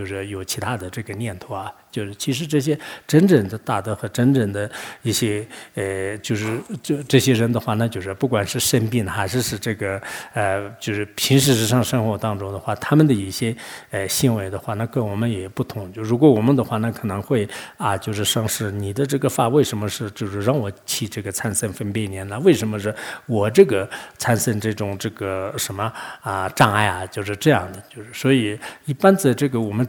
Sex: male